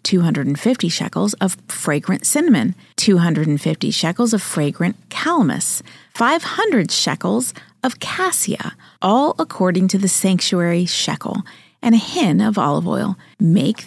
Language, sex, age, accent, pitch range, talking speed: English, female, 30-49, American, 180-250 Hz, 115 wpm